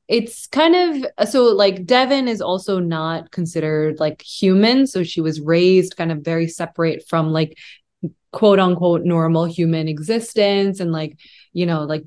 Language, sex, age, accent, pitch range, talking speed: English, female, 20-39, American, 160-190 Hz, 160 wpm